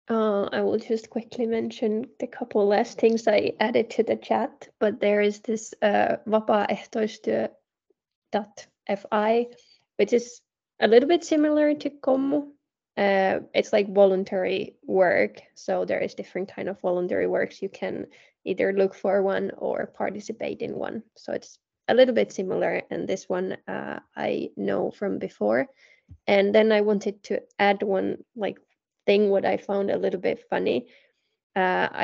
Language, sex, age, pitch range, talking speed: Finnish, female, 10-29, 190-240 Hz, 155 wpm